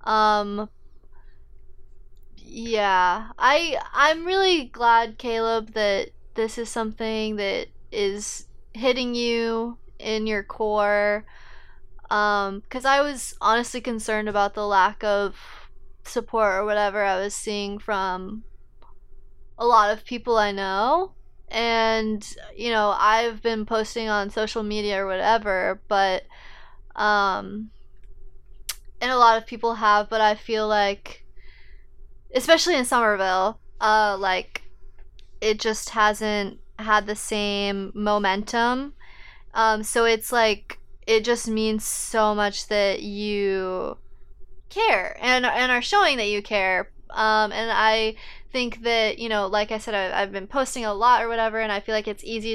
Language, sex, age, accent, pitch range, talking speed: English, female, 20-39, American, 205-230 Hz, 135 wpm